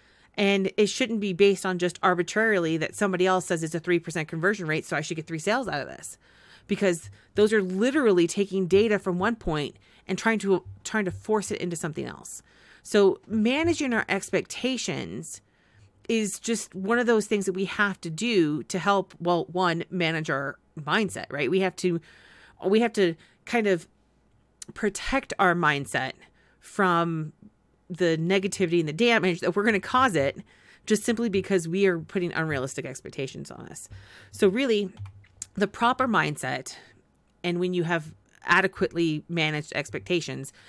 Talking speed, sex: 170 wpm, female